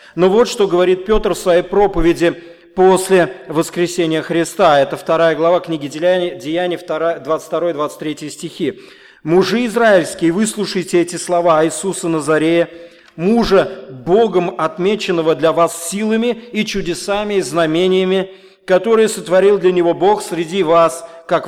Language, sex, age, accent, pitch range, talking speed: Russian, male, 40-59, native, 165-205 Hz, 120 wpm